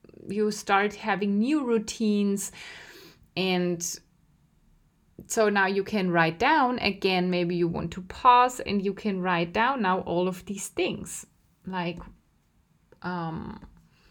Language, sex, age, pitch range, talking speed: German, female, 20-39, 175-225 Hz, 130 wpm